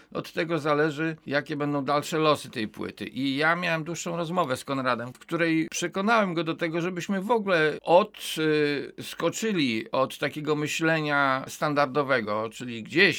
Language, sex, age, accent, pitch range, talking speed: Polish, male, 50-69, native, 115-160 Hz, 145 wpm